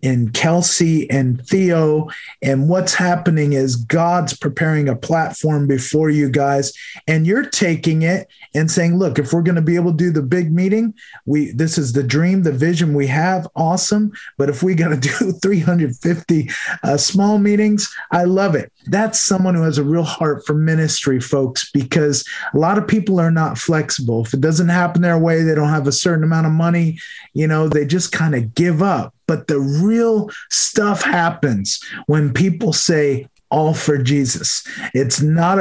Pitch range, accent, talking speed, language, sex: 140-175 Hz, American, 185 wpm, English, male